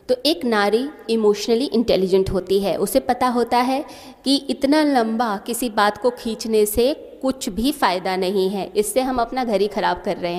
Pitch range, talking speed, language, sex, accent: 205-260 Hz, 185 wpm, Hindi, female, native